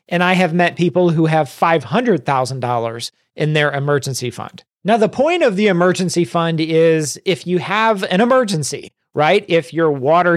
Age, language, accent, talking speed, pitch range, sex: 40-59, English, American, 170 wpm, 150-175 Hz, male